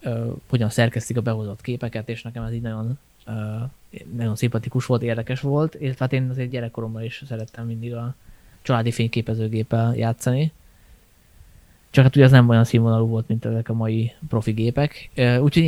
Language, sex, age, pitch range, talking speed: Hungarian, male, 20-39, 110-125 Hz, 155 wpm